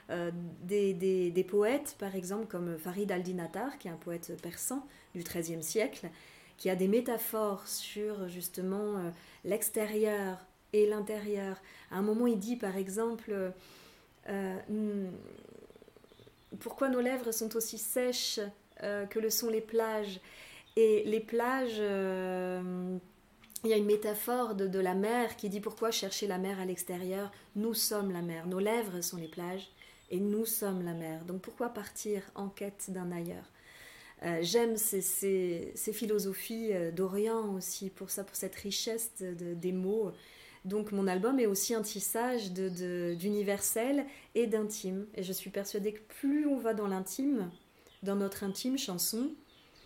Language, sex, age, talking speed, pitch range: French, female, 30-49, 155 wpm, 185-220 Hz